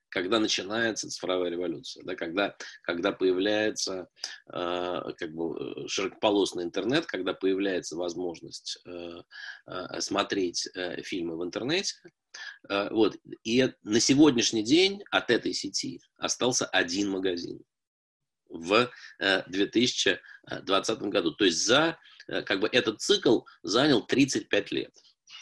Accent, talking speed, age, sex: native, 110 wpm, 20-39, male